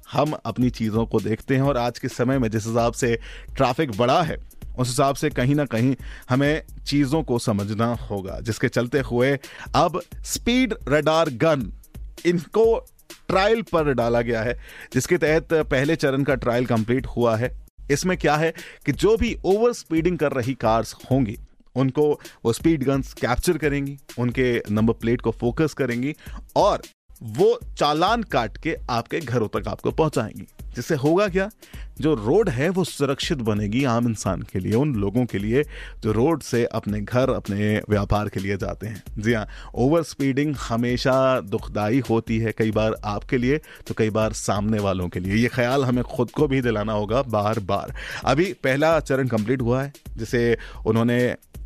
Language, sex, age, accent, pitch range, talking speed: Hindi, male, 30-49, native, 115-150 Hz, 175 wpm